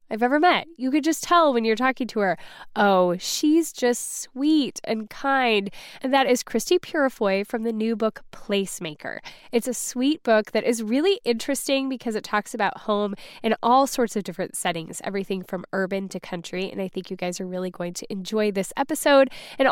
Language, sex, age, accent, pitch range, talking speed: English, female, 10-29, American, 195-260 Hz, 200 wpm